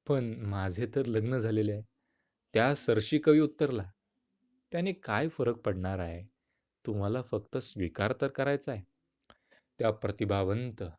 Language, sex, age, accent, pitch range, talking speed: Marathi, male, 30-49, native, 105-140 Hz, 120 wpm